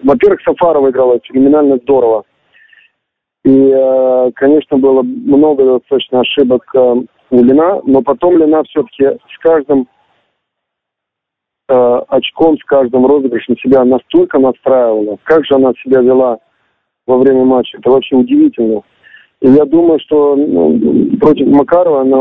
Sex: male